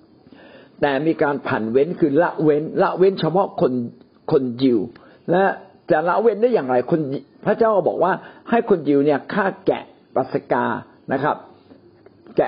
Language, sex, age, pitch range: Thai, male, 60-79, 140-210 Hz